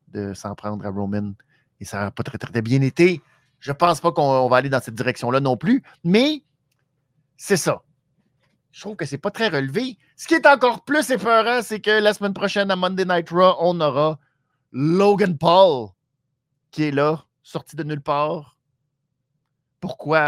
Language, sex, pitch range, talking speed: French, male, 125-165 Hz, 185 wpm